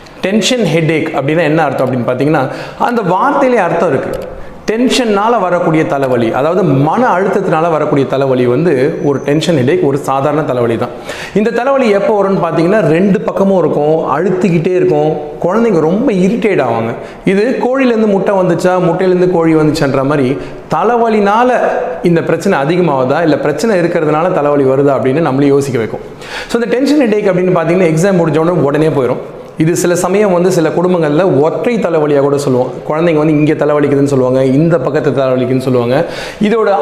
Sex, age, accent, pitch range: male, 30-49, native, 145-195 Hz